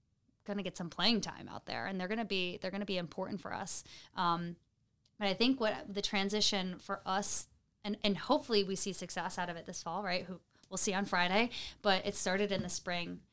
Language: English